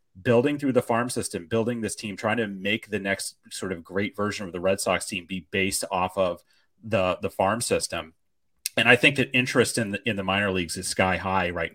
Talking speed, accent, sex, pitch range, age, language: 225 wpm, American, male, 95-120 Hz, 30-49, English